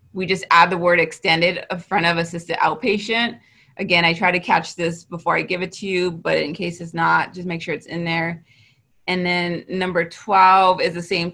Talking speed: 215 wpm